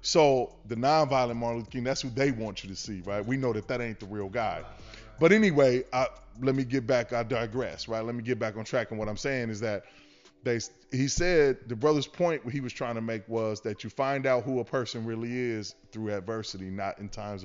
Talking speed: 240 wpm